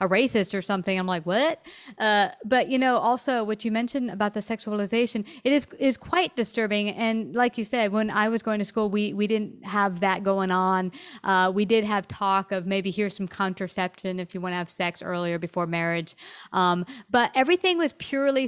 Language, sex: English, female